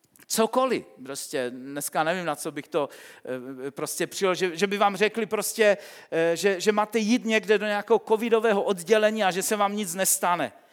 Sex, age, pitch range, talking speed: male, 40-59, 190-240 Hz, 175 wpm